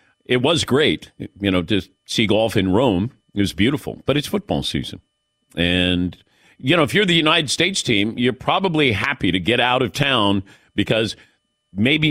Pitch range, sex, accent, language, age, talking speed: 95-135 Hz, male, American, English, 50-69, 180 wpm